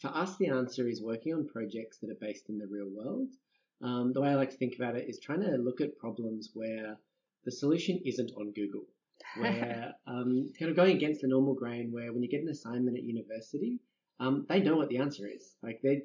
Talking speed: 230 wpm